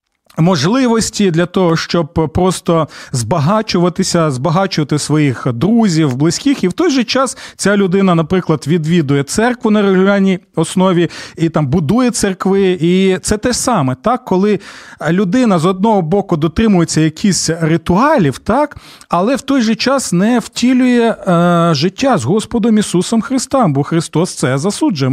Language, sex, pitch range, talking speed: Ukrainian, male, 155-205 Hz, 140 wpm